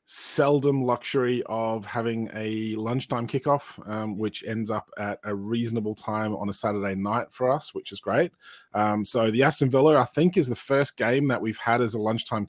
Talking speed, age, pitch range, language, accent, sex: 195 wpm, 20-39, 105-125 Hz, English, Australian, male